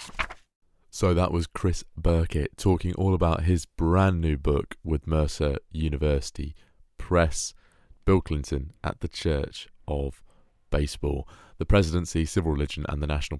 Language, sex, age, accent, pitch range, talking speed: English, male, 20-39, British, 75-85 Hz, 135 wpm